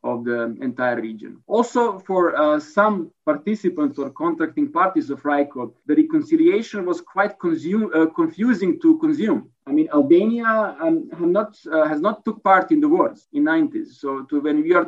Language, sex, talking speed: Turkish, male, 180 wpm